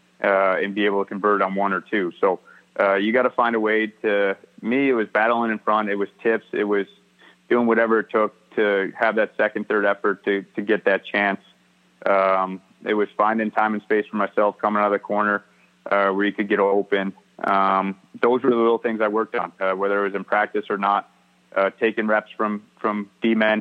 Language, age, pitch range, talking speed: English, 30-49, 100-115 Hz, 225 wpm